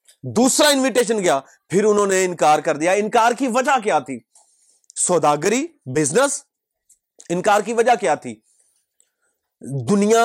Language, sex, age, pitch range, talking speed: Urdu, male, 30-49, 180-255 Hz, 130 wpm